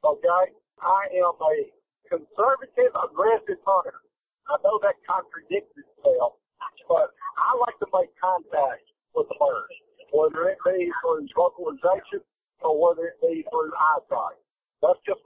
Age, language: 50-69, English